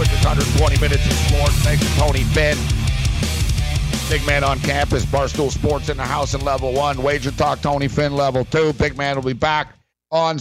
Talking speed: 185 wpm